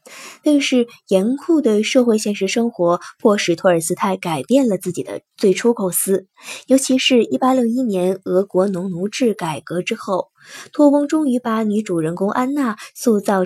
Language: Chinese